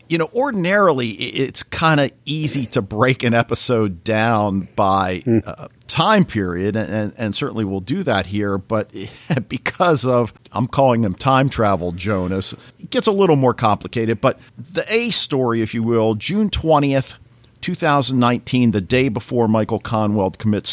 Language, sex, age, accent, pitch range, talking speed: English, male, 50-69, American, 105-130 Hz, 155 wpm